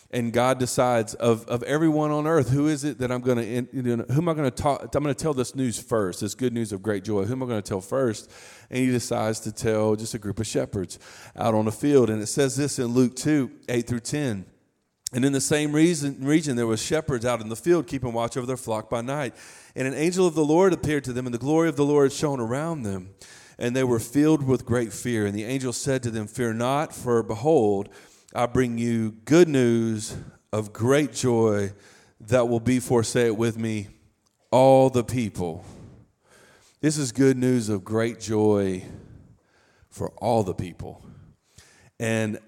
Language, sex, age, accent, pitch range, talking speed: English, male, 40-59, American, 110-135 Hz, 215 wpm